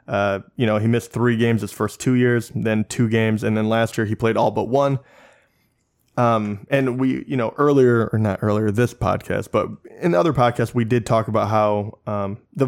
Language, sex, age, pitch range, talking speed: English, male, 20-39, 110-125 Hz, 220 wpm